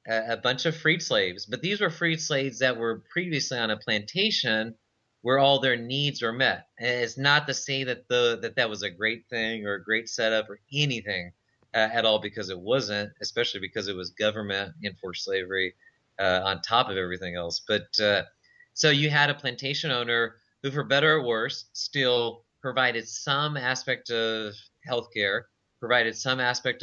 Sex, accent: male, American